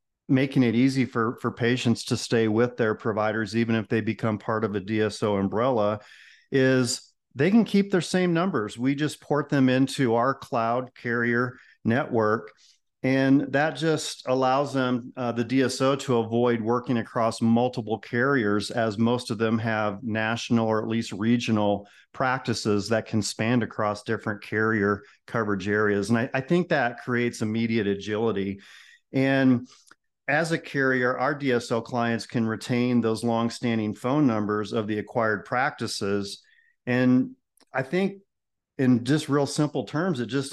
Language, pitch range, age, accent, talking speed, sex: English, 110-130 Hz, 40-59, American, 155 wpm, male